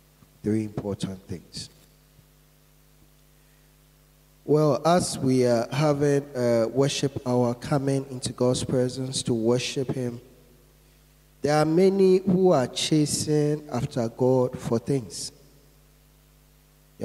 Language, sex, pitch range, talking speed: English, male, 125-145 Hz, 100 wpm